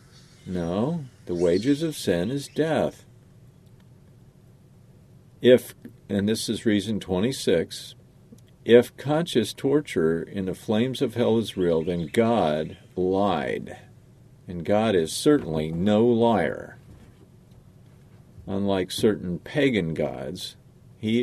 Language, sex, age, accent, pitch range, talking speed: English, male, 50-69, American, 100-135 Hz, 105 wpm